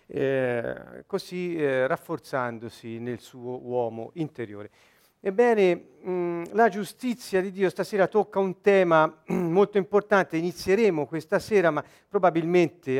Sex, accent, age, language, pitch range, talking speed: male, native, 50-69, Italian, 140-190 Hz, 110 wpm